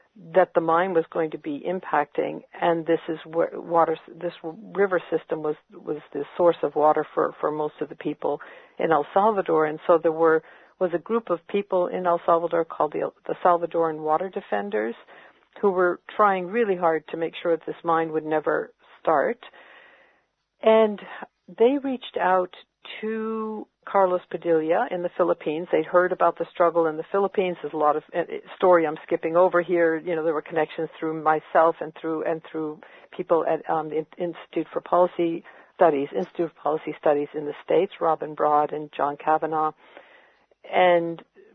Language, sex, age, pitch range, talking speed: English, female, 50-69, 160-185 Hz, 175 wpm